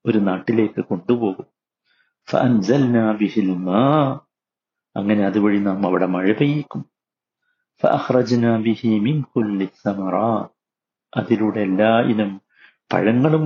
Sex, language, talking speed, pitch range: male, Malayalam, 55 wpm, 100-120 Hz